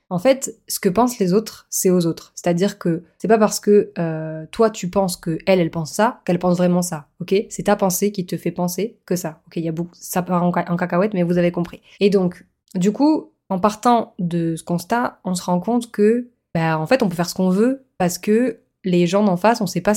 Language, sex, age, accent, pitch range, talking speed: French, female, 20-39, French, 175-210 Hz, 250 wpm